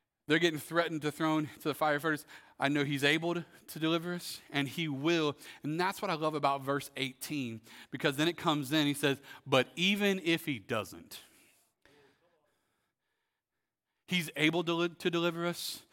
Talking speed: 165 wpm